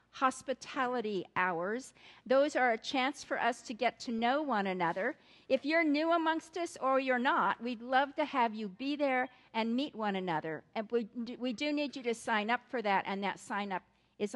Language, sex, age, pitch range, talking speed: English, female, 50-69, 200-260 Hz, 200 wpm